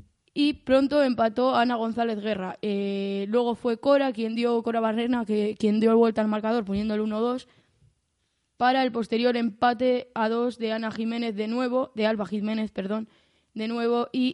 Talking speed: 170 wpm